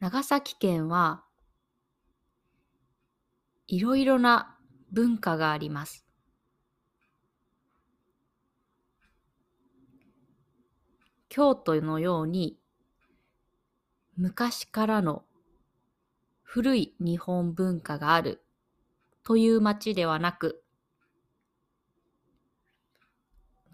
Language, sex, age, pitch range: Japanese, female, 20-39, 155-220 Hz